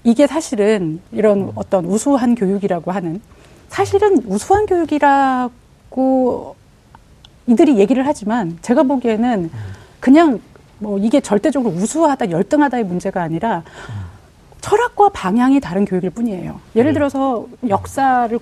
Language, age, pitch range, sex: Korean, 40-59, 175-250 Hz, female